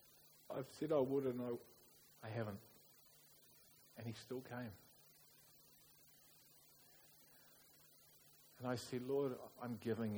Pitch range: 105-125 Hz